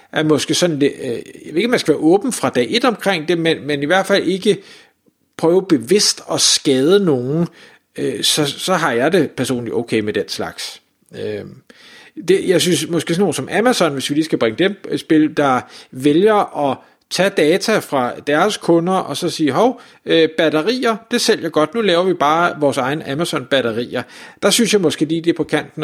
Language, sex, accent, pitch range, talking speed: Danish, male, native, 145-190 Hz, 195 wpm